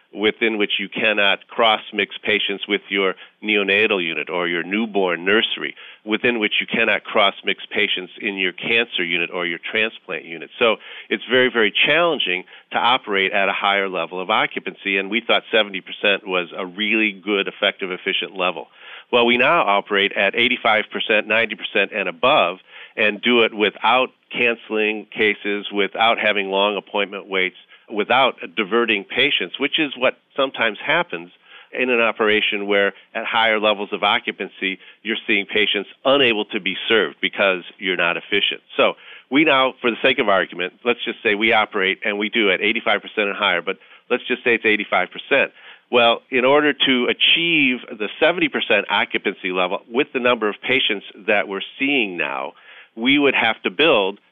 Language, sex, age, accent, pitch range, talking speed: English, male, 50-69, American, 100-120 Hz, 165 wpm